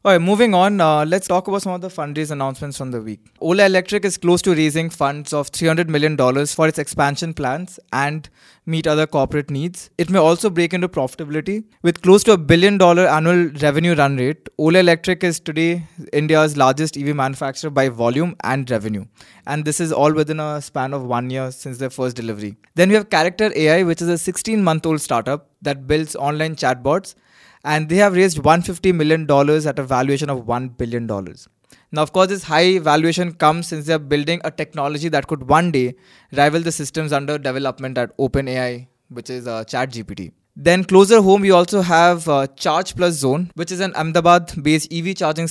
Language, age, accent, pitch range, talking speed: English, 20-39, Indian, 140-175 Hz, 195 wpm